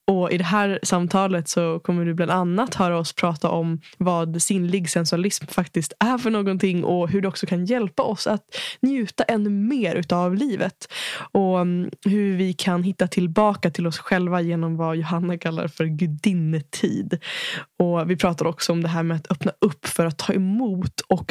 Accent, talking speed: native, 185 wpm